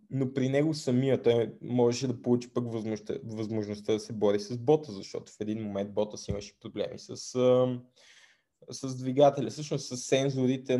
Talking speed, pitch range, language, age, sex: 165 wpm, 115-135 Hz, Bulgarian, 20-39, male